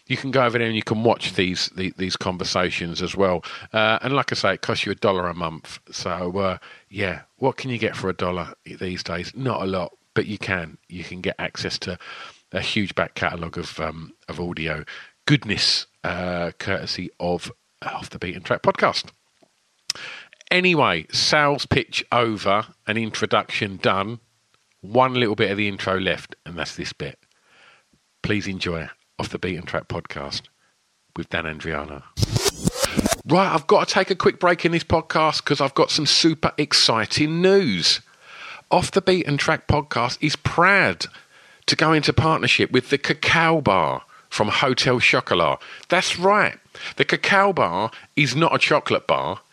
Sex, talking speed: male, 175 wpm